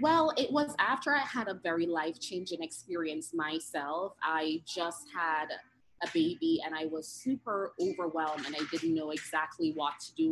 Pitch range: 160-235 Hz